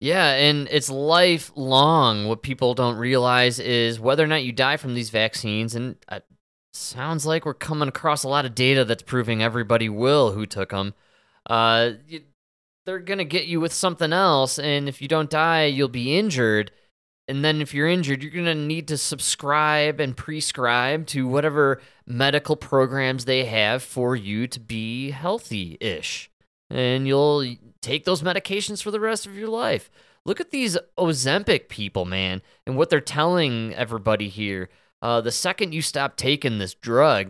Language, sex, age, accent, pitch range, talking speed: English, male, 20-39, American, 115-155 Hz, 175 wpm